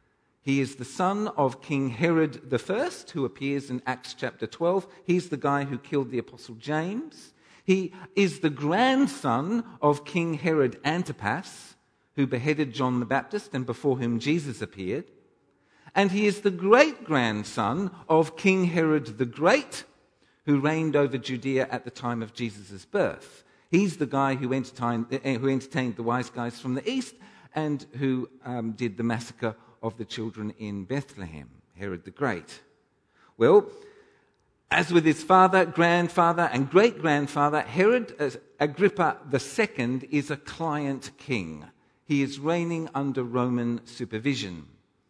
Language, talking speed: English, 140 wpm